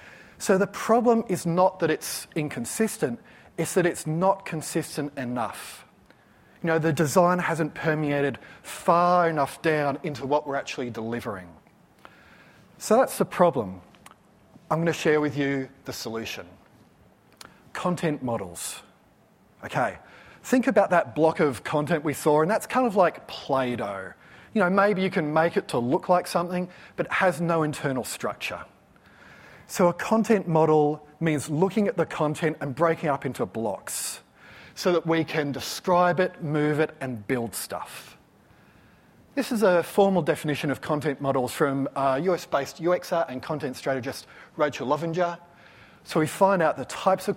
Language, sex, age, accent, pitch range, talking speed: English, male, 30-49, Australian, 140-180 Hz, 155 wpm